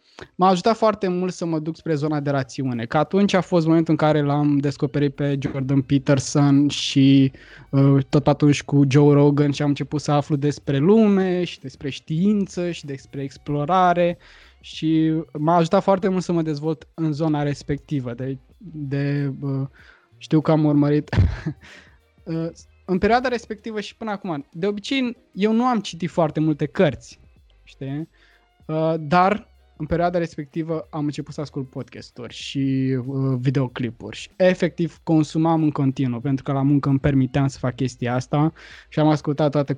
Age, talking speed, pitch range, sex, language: 20-39, 165 wpm, 140-170 Hz, male, Romanian